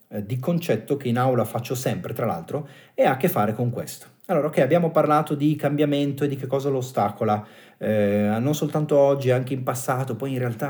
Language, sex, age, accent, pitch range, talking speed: Italian, male, 40-59, native, 115-175 Hz, 215 wpm